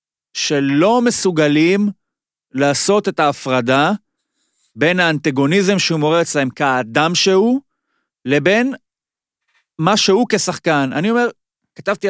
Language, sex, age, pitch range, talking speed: Hebrew, male, 30-49, 155-215 Hz, 95 wpm